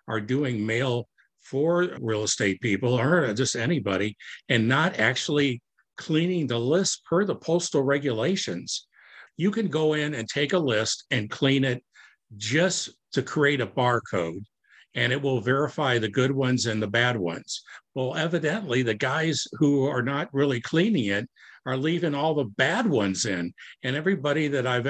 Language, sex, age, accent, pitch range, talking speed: English, male, 60-79, American, 120-155 Hz, 165 wpm